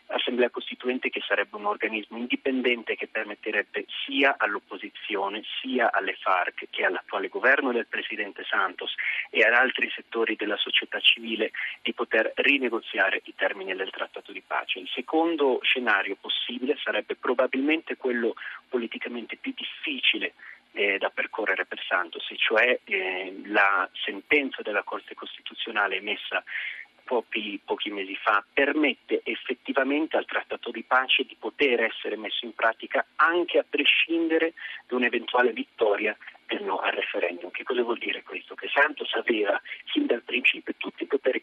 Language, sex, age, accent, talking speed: Italian, male, 40-59, native, 140 wpm